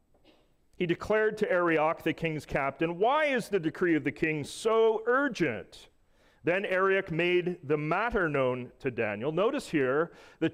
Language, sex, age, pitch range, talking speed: English, male, 40-59, 125-180 Hz, 155 wpm